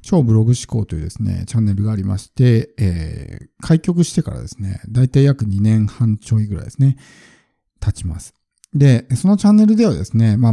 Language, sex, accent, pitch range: Japanese, male, native, 105-140 Hz